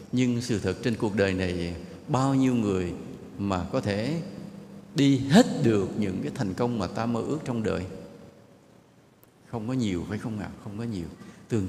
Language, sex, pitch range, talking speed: English, male, 95-140 Hz, 185 wpm